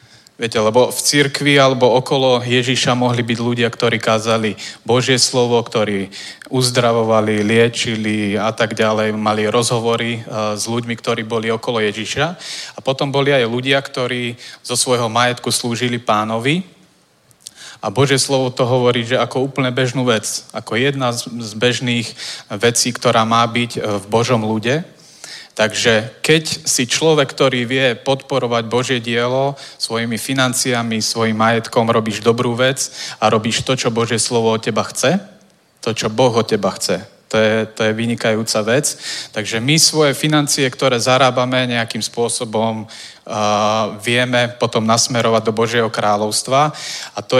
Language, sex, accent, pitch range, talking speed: Czech, male, Slovak, 110-130 Hz, 145 wpm